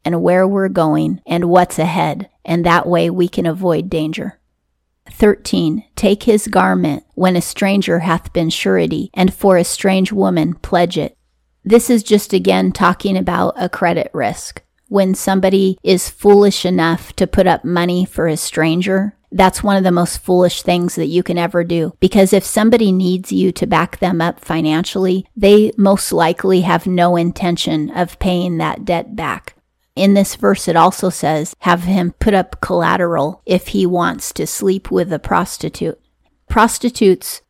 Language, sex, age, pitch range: English, female, 30-49, 170-195 Hz